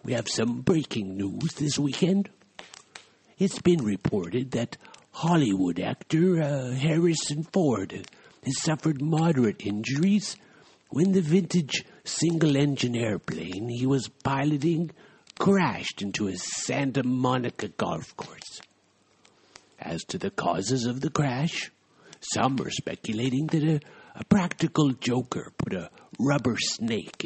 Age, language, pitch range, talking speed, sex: 60-79, English, 120-160 Hz, 120 wpm, male